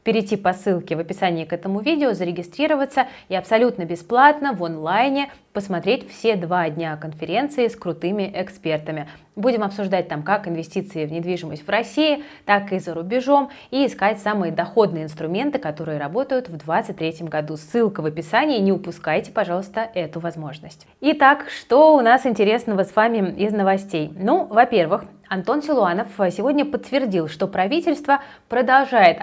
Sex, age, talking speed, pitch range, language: female, 20-39, 145 wpm, 175-240 Hz, Russian